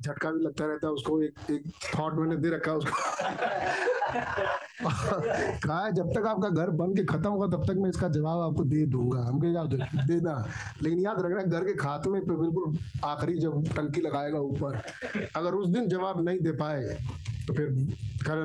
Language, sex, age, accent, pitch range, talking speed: Hindi, male, 50-69, native, 140-170 Hz, 190 wpm